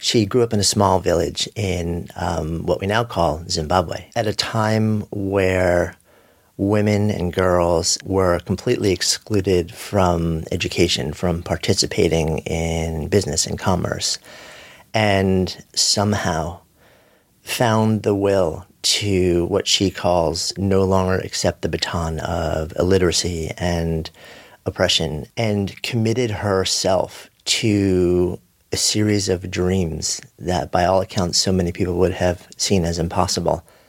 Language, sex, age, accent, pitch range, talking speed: English, male, 40-59, American, 85-100 Hz, 125 wpm